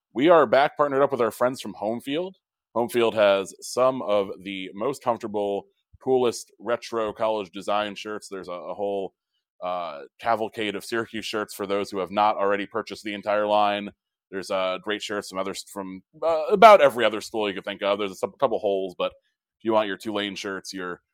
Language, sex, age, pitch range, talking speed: English, male, 20-39, 95-115 Hz, 205 wpm